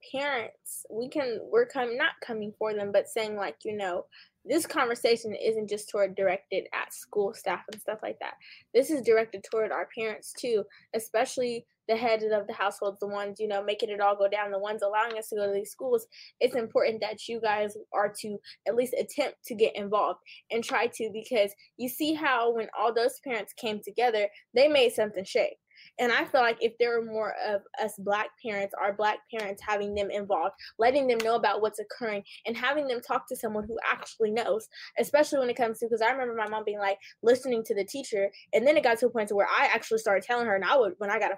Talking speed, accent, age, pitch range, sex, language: 230 wpm, American, 10-29, 210-285 Hz, female, English